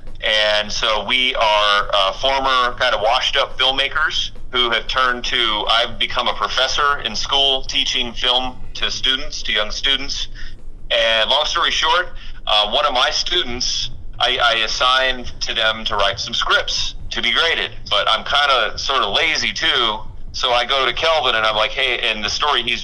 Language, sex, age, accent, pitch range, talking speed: English, male, 30-49, American, 105-130 Hz, 185 wpm